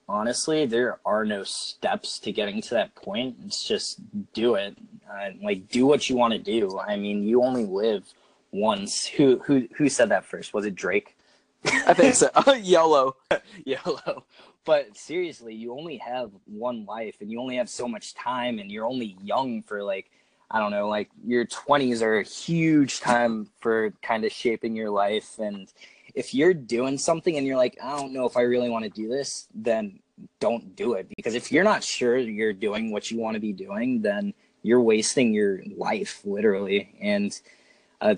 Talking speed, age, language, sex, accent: 190 wpm, 20-39, English, male, American